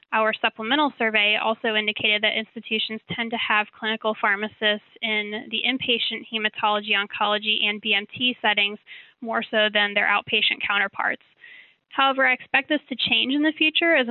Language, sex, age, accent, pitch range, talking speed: English, female, 10-29, American, 215-245 Hz, 155 wpm